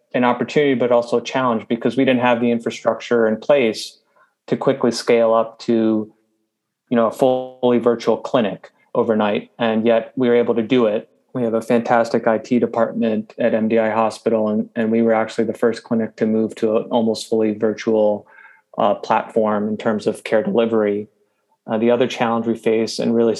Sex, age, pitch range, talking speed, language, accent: male, 30-49, 110-120 Hz, 185 wpm, English, American